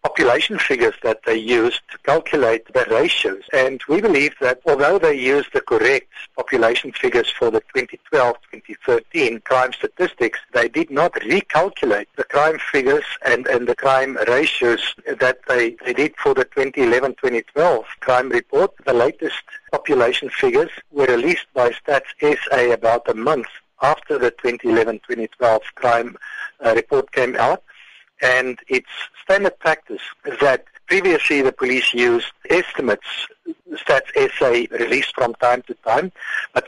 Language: English